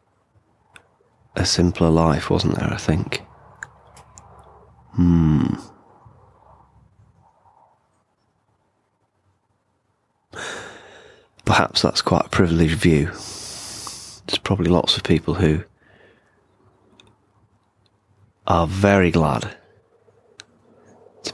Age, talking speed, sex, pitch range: 30-49, 65 wpm, male, 85-105 Hz